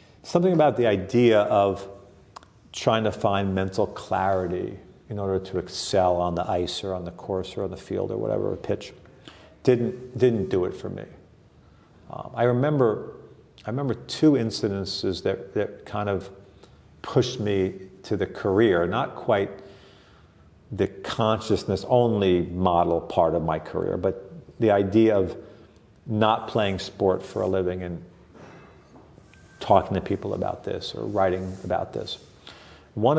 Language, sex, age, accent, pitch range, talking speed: English, male, 50-69, American, 95-115 Hz, 145 wpm